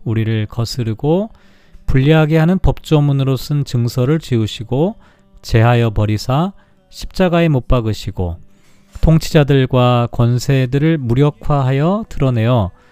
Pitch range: 120-165 Hz